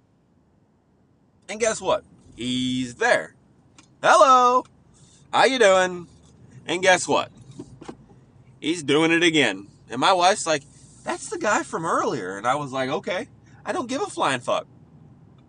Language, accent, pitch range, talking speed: English, American, 125-180 Hz, 140 wpm